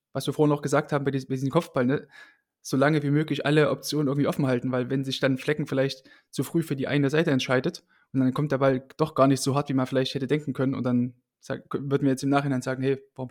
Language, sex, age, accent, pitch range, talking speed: German, male, 20-39, German, 130-145 Hz, 265 wpm